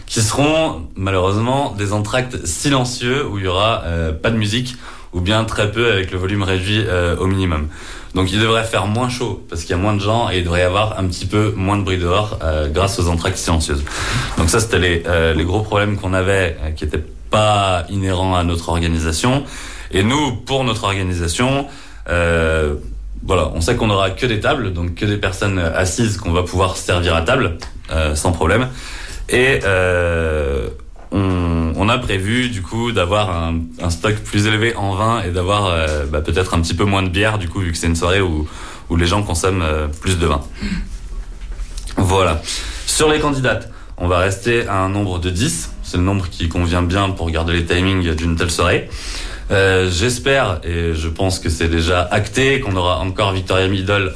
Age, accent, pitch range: 30-49, French, 85-105 Hz